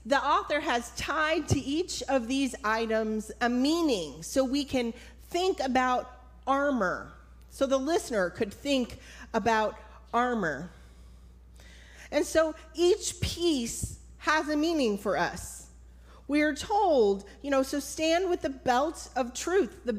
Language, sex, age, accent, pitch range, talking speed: English, female, 30-49, American, 200-295 Hz, 140 wpm